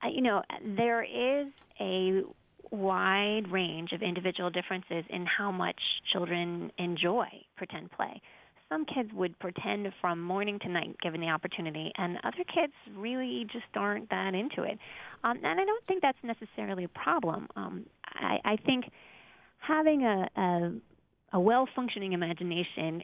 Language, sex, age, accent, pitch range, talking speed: English, female, 30-49, American, 170-215 Hz, 145 wpm